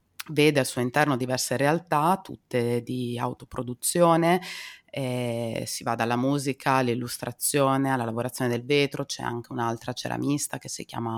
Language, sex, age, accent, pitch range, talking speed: Italian, female, 30-49, native, 120-140 Hz, 140 wpm